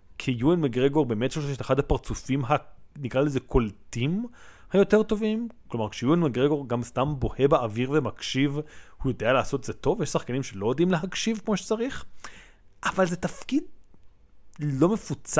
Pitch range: 125-190 Hz